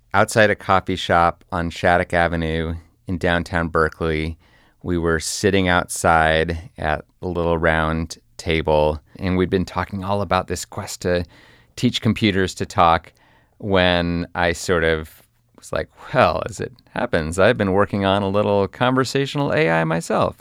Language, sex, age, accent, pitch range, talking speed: English, male, 30-49, American, 85-110 Hz, 150 wpm